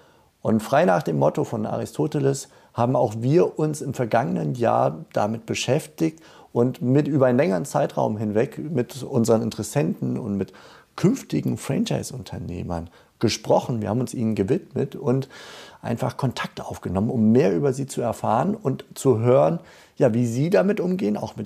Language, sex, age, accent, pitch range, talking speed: German, male, 40-59, German, 105-130 Hz, 155 wpm